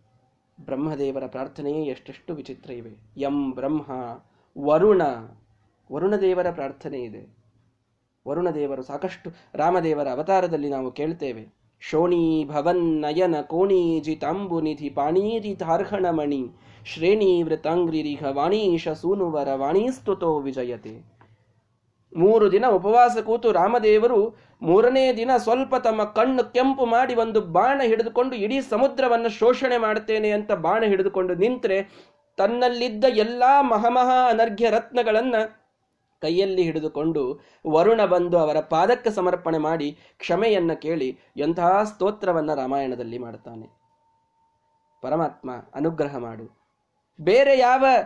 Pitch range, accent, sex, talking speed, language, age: 145-230 Hz, native, male, 90 wpm, Kannada, 20-39